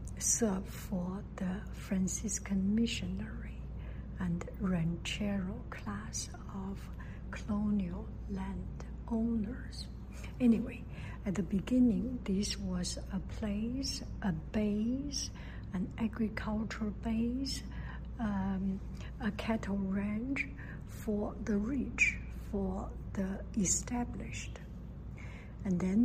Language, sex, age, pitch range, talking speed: English, female, 60-79, 180-210 Hz, 85 wpm